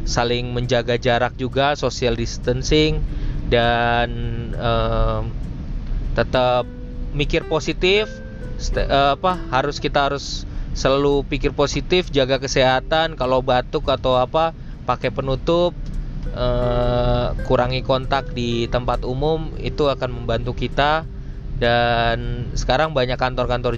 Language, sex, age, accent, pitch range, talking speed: Indonesian, male, 20-39, native, 120-145 Hz, 105 wpm